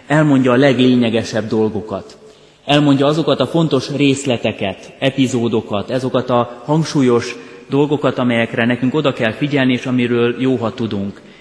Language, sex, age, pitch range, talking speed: Hungarian, male, 30-49, 110-130 Hz, 120 wpm